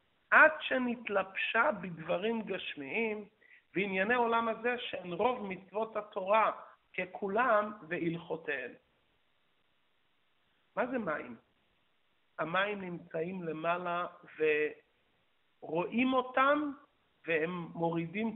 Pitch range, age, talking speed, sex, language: 175-240 Hz, 50-69, 75 wpm, male, Hebrew